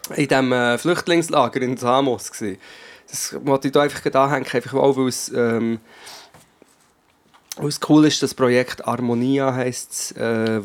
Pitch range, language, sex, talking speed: 120-145 Hz, German, male, 140 wpm